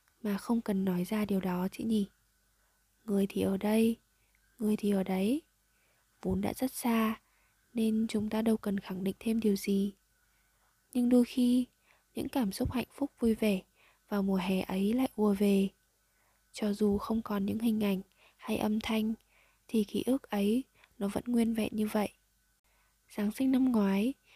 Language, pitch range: Vietnamese, 200-235 Hz